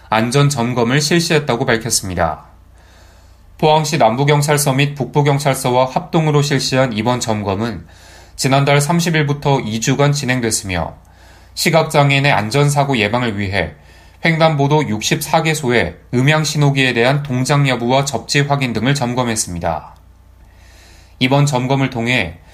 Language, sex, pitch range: Korean, male, 90-145 Hz